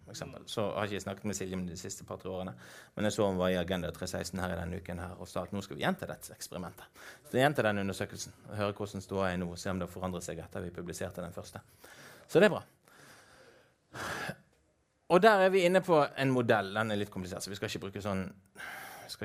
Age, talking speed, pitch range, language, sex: 30-49, 260 wpm, 100-145 Hz, English, male